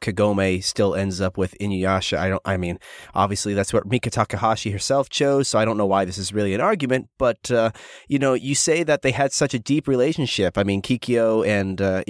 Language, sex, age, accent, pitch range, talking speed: English, male, 30-49, American, 105-130 Hz, 225 wpm